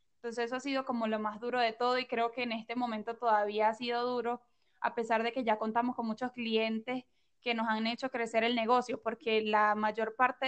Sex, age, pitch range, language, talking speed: female, 10-29, 220-250 Hz, Spanish, 230 wpm